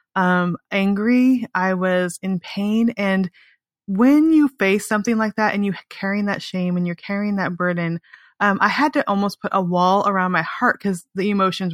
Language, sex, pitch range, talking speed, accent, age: English, female, 185-220 Hz, 190 wpm, American, 20-39